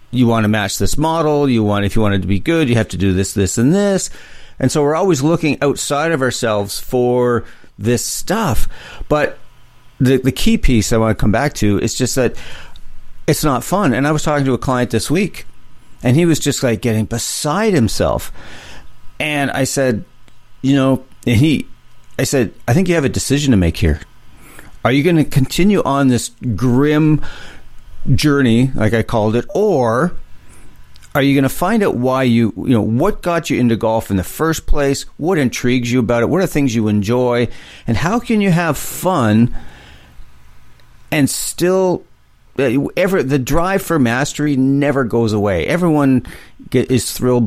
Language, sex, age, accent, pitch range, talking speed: English, male, 50-69, American, 110-145 Hz, 185 wpm